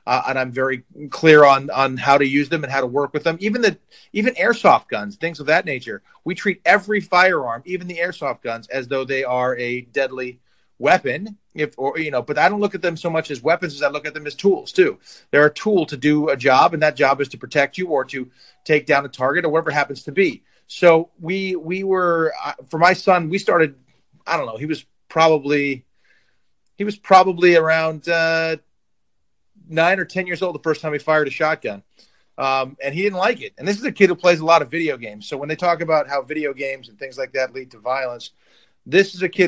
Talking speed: 240 wpm